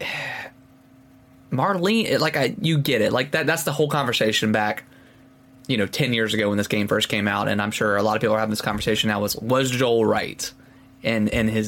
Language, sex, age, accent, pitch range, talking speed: English, male, 20-39, American, 110-130 Hz, 220 wpm